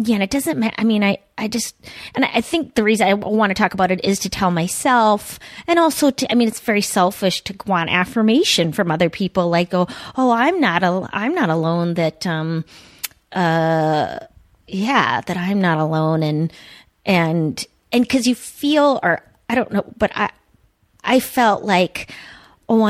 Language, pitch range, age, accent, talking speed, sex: English, 170-225 Hz, 30-49, American, 195 wpm, female